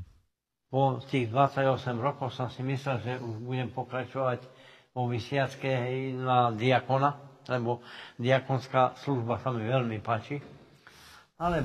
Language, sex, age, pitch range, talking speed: Slovak, male, 60-79, 120-140 Hz, 120 wpm